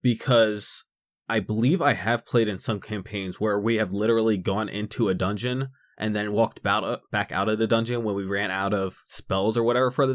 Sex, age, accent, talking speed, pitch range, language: male, 20-39, American, 205 wpm, 105-125 Hz, English